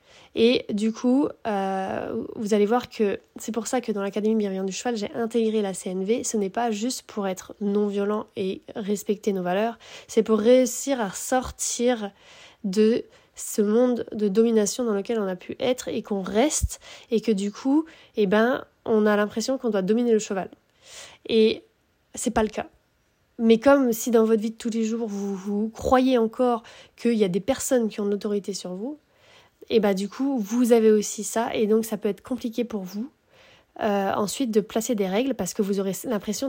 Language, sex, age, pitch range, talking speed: French, female, 20-39, 210-250 Hz, 200 wpm